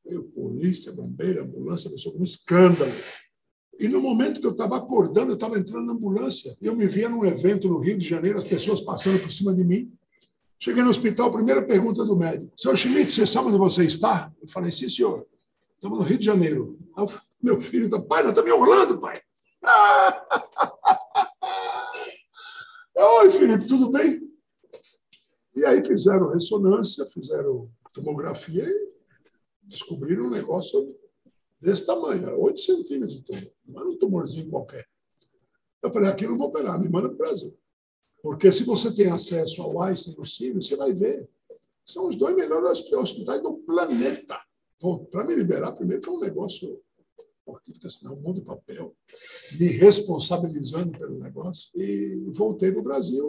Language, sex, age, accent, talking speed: Portuguese, male, 60-79, Brazilian, 165 wpm